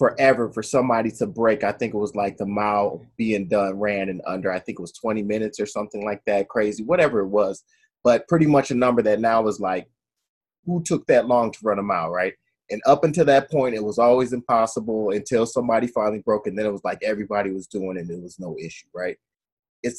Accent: American